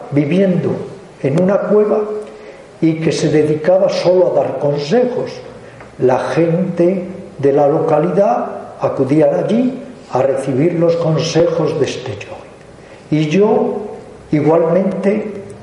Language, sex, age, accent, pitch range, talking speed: Spanish, male, 50-69, Spanish, 140-190 Hz, 110 wpm